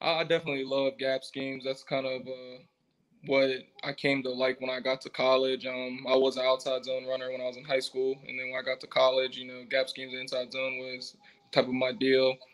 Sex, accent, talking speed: male, American, 245 wpm